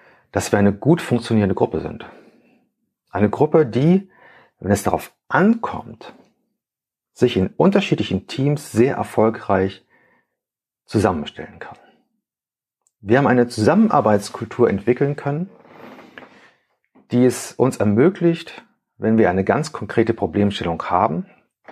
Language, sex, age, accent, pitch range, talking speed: German, male, 40-59, German, 105-140 Hz, 110 wpm